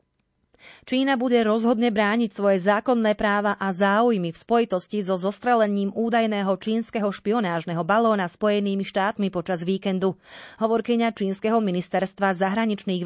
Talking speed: 115 wpm